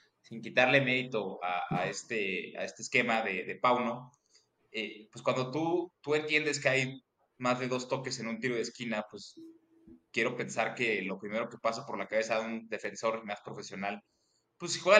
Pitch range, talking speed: 110-140 Hz, 190 wpm